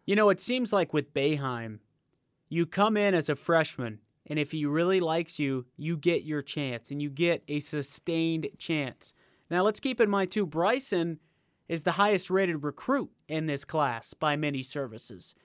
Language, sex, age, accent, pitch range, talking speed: English, male, 30-49, American, 145-180 Hz, 180 wpm